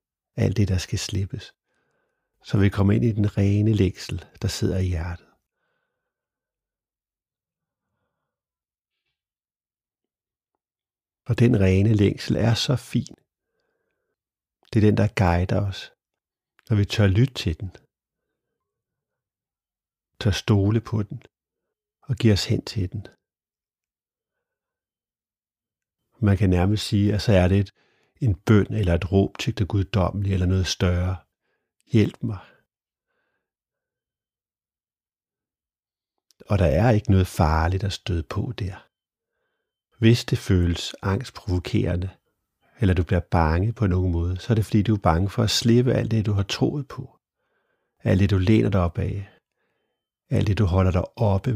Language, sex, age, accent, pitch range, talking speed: Danish, male, 60-79, native, 95-120 Hz, 135 wpm